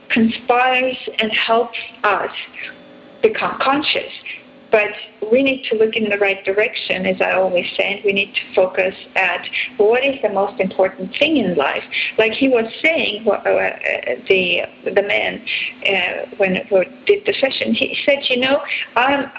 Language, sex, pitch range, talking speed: English, female, 205-285 Hz, 150 wpm